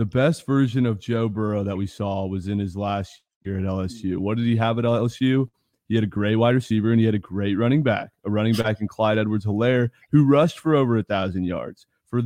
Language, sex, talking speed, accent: English, male, 240 wpm, American